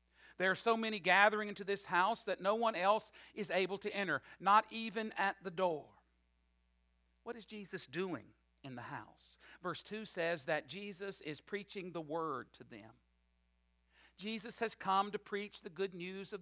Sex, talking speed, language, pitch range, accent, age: male, 175 wpm, English, 155-215 Hz, American, 50-69